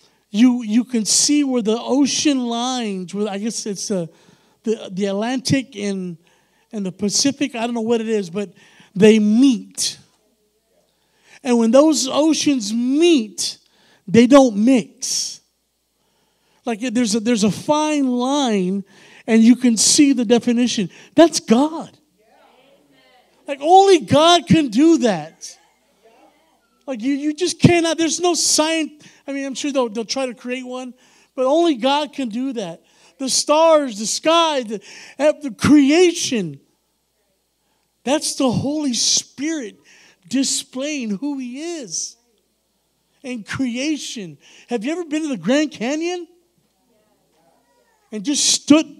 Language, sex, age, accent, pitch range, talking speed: English, male, 50-69, American, 210-290 Hz, 135 wpm